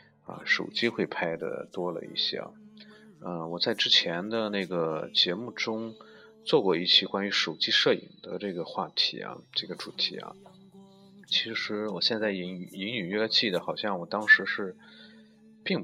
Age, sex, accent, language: 30-49, male, native, Chinese